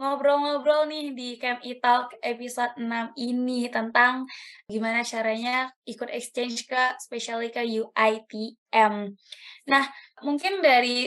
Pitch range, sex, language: 235-275 Hz, female, Indonesian